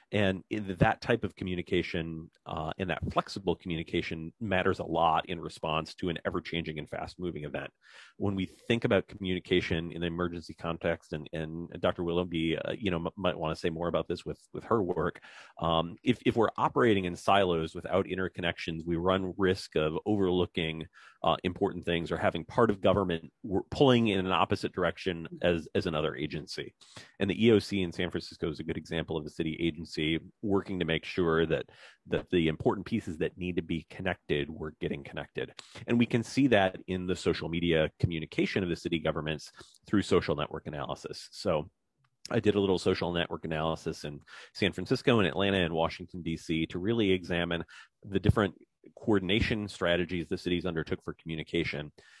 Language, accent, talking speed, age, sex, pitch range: English, American, 180 wpm, 40-59, male, 80-95 Hz